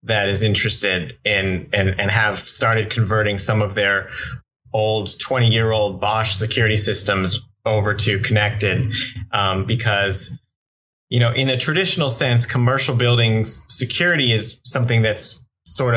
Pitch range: 105-125 Hz